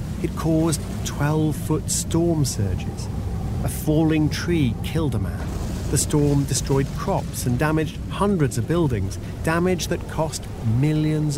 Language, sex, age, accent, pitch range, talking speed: English, male, 40-59, British, 105-155 Hz, 125 wpm